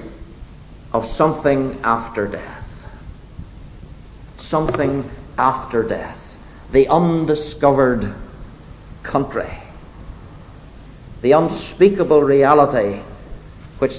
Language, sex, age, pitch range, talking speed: English, male, 60-79, 135-215 Hz, 60 wpm